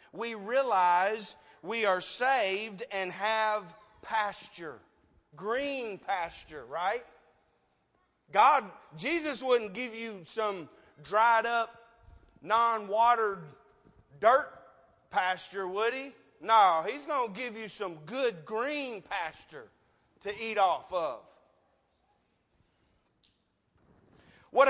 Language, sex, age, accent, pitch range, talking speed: English, male, 40-59, American, 200-245 Hz, 95 wpm